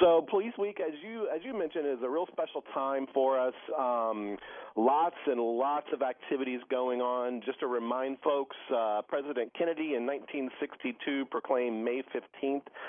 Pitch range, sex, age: 105-135 Hz, male, 40-59